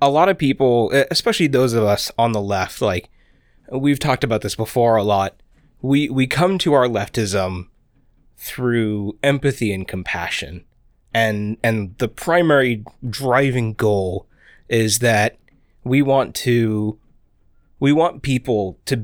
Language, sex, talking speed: English, male, 140 wpm